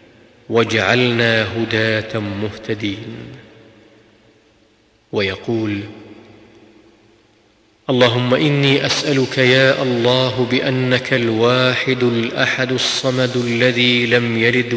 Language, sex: Arabic, male